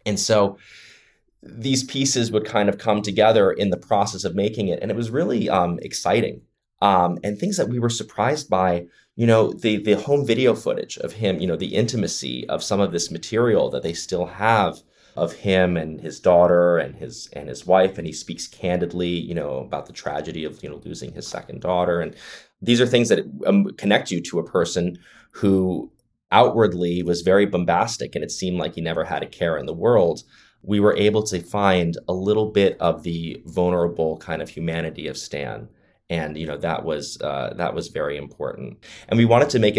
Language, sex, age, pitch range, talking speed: English, male, 20-39, 85-105 Hz, 205 wpm